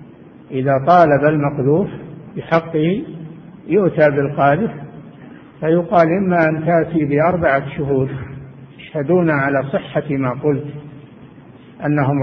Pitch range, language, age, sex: 140-165 Hz, Arabic, 60-79, male